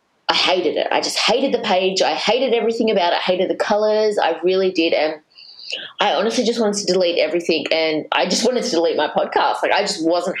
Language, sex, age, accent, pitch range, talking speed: English, female, 20-39, Australian, 160-200 Hz, 230 wpm